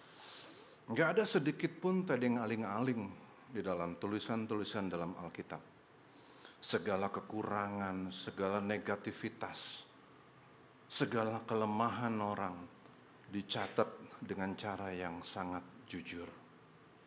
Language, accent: Indonesian, native